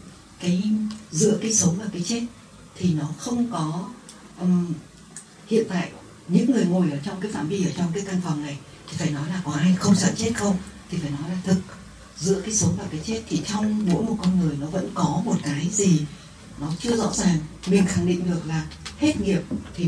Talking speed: 220 wpm